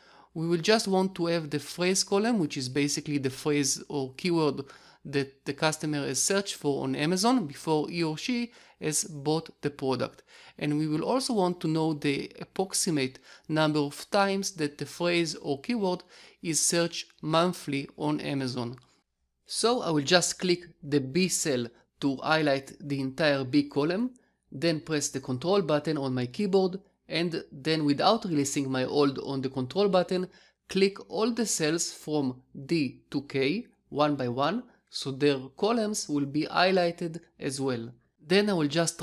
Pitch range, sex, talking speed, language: 145-185 Hz, male, 170 wpm, English